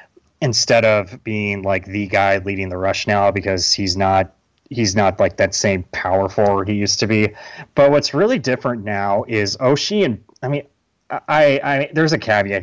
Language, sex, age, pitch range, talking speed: English, male, 30-49, 95-115 Hz, 190 wpm